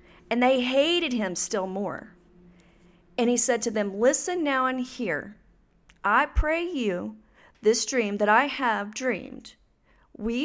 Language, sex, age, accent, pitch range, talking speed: English, female, 40-59, American, 210-270 Hz, 145 wpm